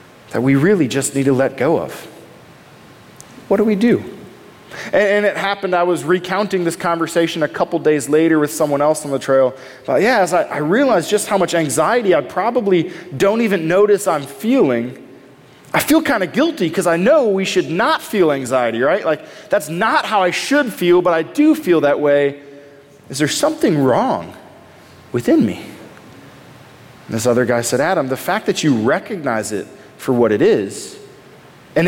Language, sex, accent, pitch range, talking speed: English, male, American, 135-200 Hz, 190 wpm